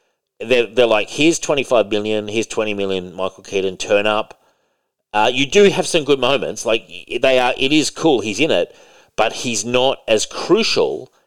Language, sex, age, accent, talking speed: English, male, 40-59, Australian, 185 wpm